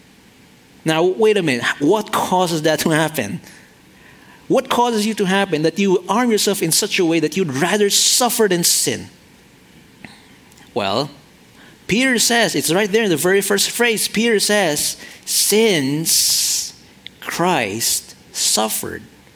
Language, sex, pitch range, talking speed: English, male, 145-215 Hz, 135 wpm